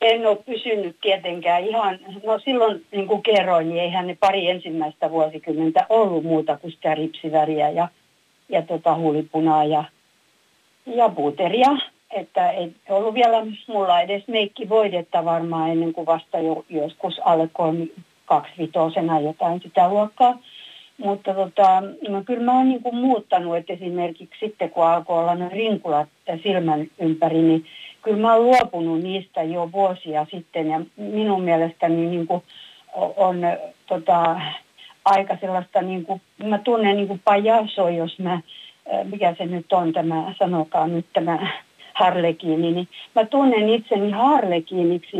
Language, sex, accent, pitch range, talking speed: Finnish, female, native, 165-205 Hz, 130 wpm